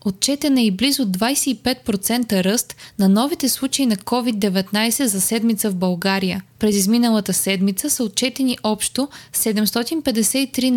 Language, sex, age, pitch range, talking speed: Bulgarian, female, 20-39, 200-245 Hz, 125 wpm